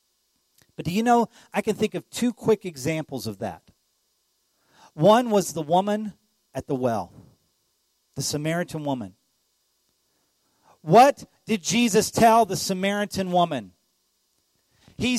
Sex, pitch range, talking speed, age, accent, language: male, 165-235 Hz, 125 wpm, 40-59, American, English